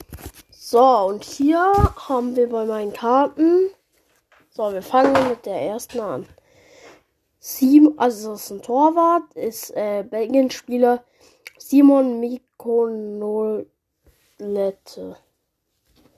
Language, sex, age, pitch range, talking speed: German, female, 10-29, 215-310 Hz, 95 wpm